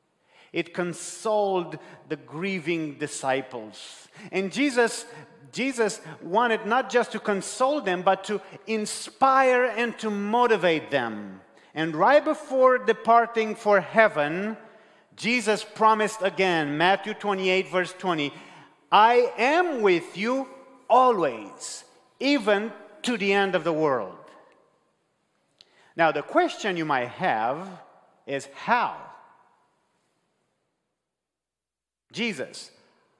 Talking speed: 100 wpm